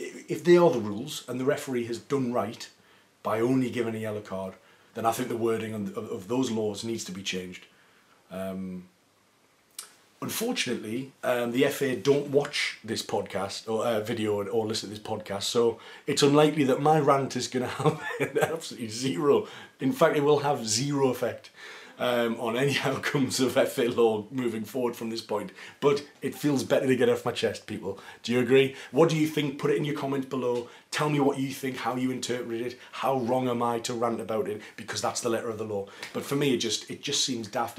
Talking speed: 210 wpm